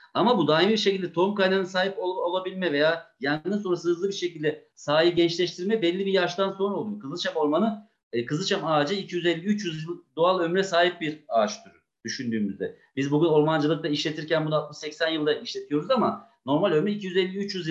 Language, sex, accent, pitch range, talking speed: Turkish, male, native, 155-195 Hz, 165 wpm